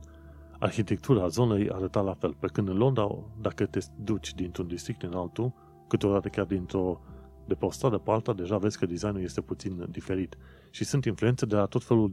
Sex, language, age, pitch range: male, Romanian, 30-49, 80-110 Hz